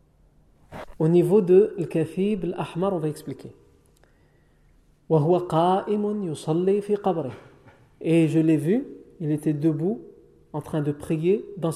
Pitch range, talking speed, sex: 145-200 Hz, 100 wpm, male